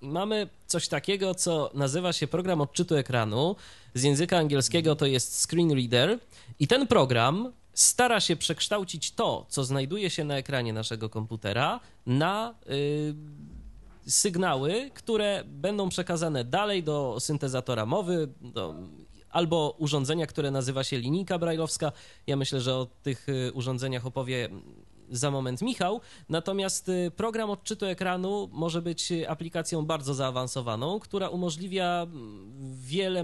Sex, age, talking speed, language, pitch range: male, 20-39, 125 wpm, Polish, 130-180 Hz